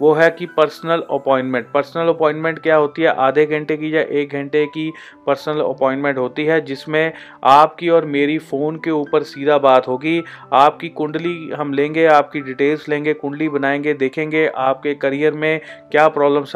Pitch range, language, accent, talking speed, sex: 140-160 Hz, Hindi, native, 165 wpm, male